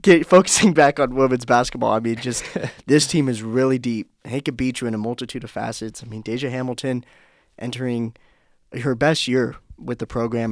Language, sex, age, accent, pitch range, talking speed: English, male, 20-39, American, 110-130 Hz, 190 wpm